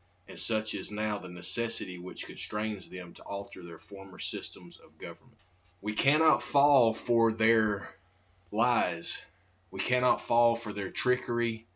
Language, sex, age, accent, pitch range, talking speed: English, male, 30-49, American, 95-120 Hz, 145 wpm